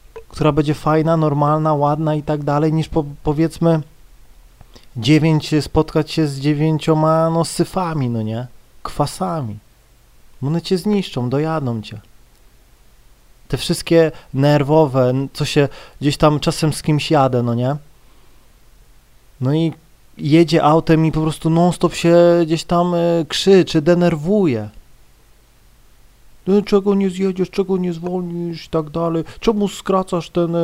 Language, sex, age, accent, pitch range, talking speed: Polish, male, 30-49, native, 150-175 Hz, 130 wpm